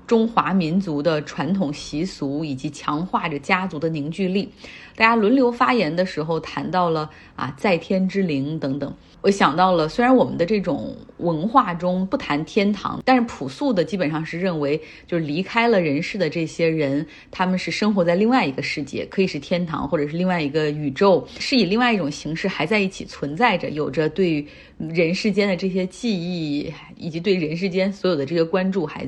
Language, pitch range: Chinese, 155-200 Hz